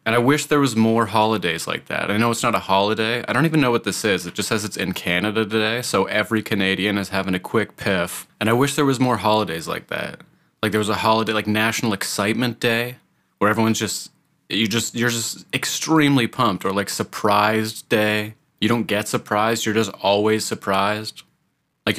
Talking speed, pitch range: 210 wpm, 100-115 Hz